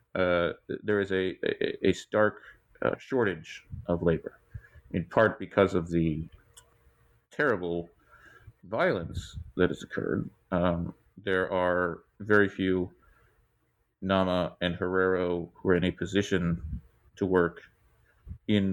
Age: 40-59